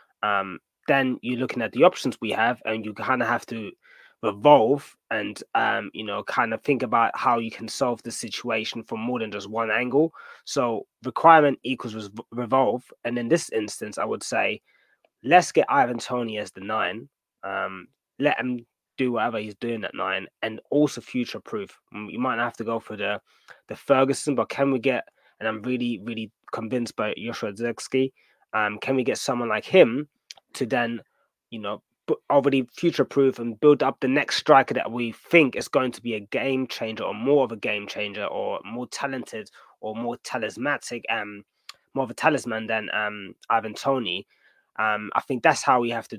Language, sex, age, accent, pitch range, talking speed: English, male, 20-39, British, 110-130 Hz, 190 wpm